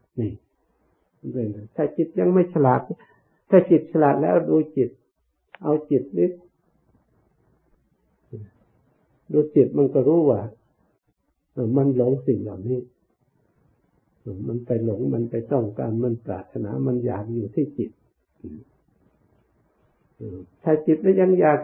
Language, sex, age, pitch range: Thai, male, 60-79, 115-145 Hz